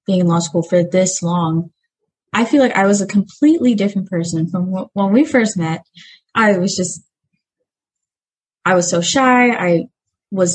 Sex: female